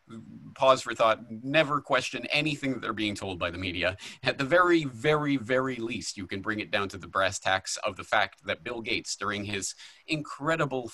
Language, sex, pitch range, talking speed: English, male, 100-135 Hz, 205 wpm